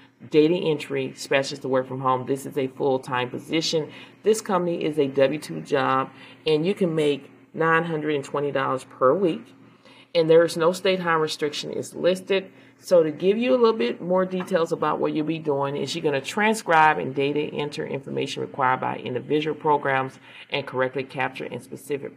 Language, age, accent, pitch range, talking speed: English, 40-59, American, 135-160 Hz, 180 wpm